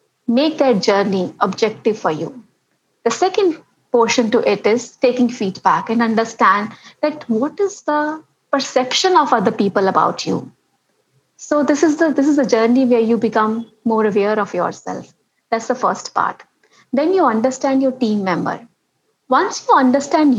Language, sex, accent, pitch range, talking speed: English, female, Indian, 215-275 Hz, 160 wpm